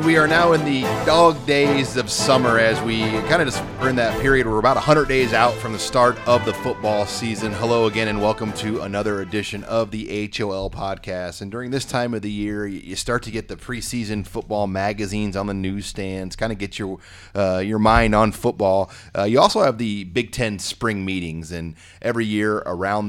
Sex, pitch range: male, 95-110 Hz